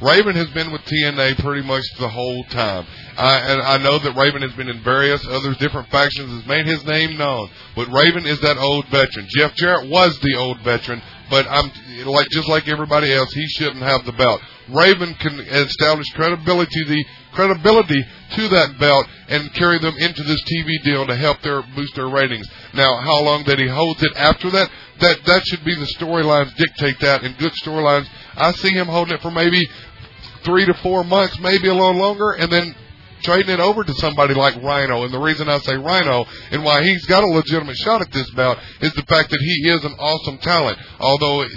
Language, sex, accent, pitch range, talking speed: English, male, American, 135-165 Hz, 210 wpm